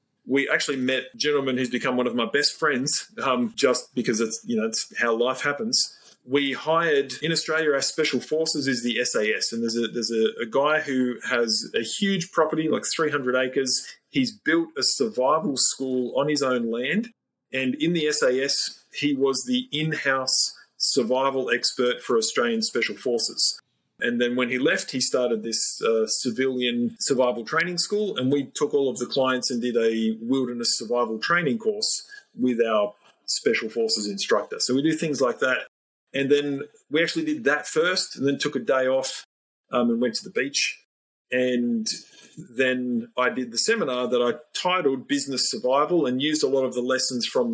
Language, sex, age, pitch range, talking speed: English, male, 30-49, 120-150 Hz, 185 wpm